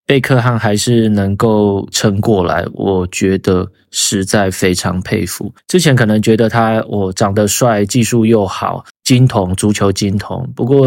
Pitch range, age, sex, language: 100-115 Hz, 20-39, male, Chinese